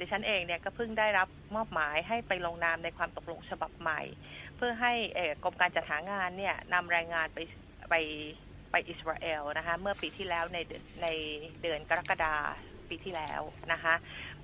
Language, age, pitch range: Thai, 30-49, 165-215 Hz